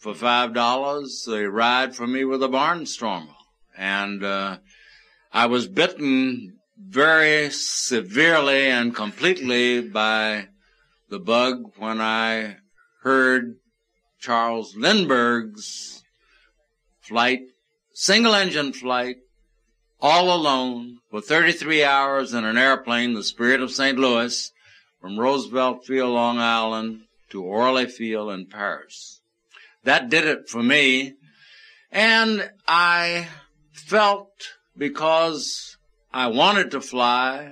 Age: 60-79